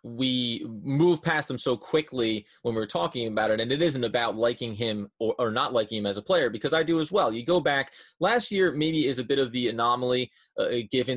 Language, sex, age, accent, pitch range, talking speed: English, male, 30-49, American, 120-155 Hz, 235 wpm